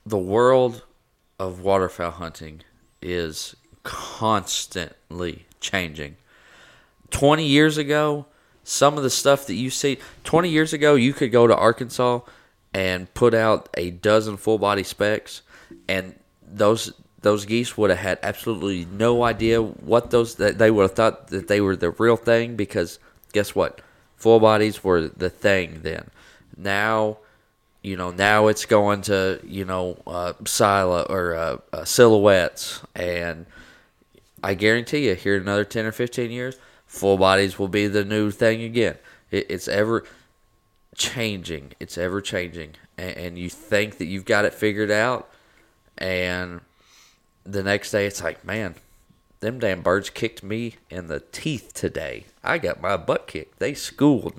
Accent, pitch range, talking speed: American, 90-115 Hz, 150 wpm